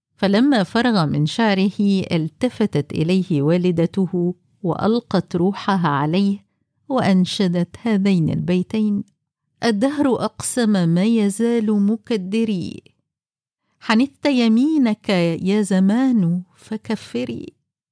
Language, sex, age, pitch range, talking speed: Arabic, female, 50-69, 175-225 Hz, 75 wpm